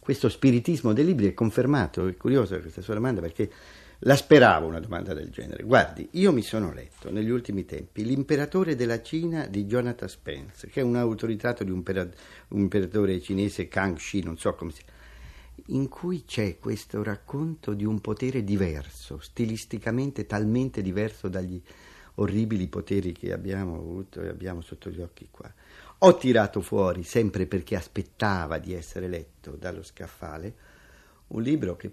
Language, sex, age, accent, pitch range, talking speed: Italian, male, 50-69, native, 90-105 Hz, 160 wpm